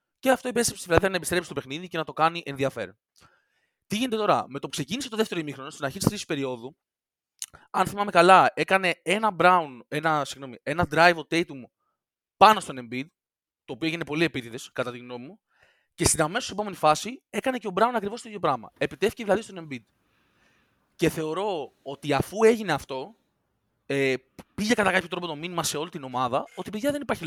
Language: Greek